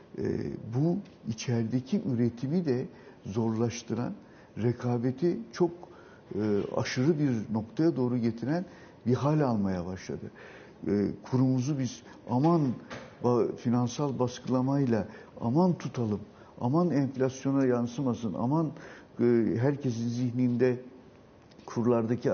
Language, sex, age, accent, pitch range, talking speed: Turkish, male, 60-79, native, 115-140 Hz, 95 wpm